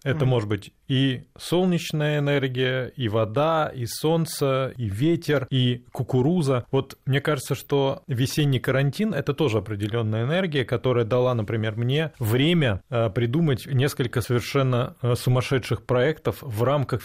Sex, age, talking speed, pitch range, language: male, 20-39, 125 wpm, 110-135 Hz, Russian